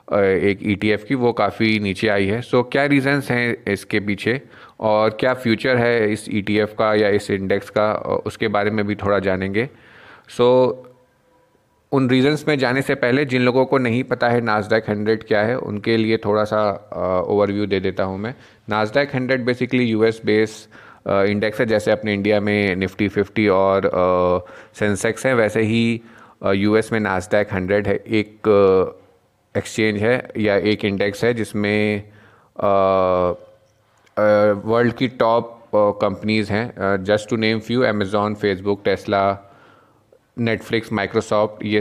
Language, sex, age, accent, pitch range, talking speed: Hindi, male, 30-49, native, 100-115 Hz, 150 wpm